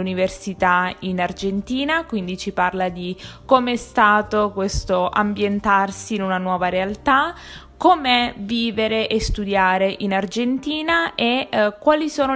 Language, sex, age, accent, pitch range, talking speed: Italian, female, 20-39, native, 195-255 Hz, 125 wpm